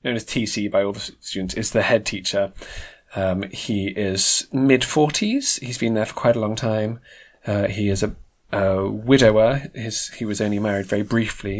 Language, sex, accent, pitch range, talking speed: English, male, British, 100-115 Hz, 190 wpm